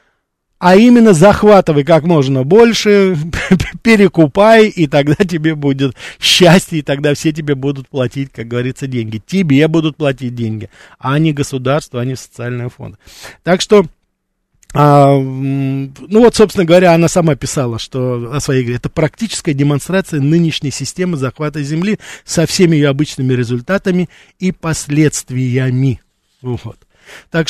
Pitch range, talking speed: 125-160 Hz, 130 wpm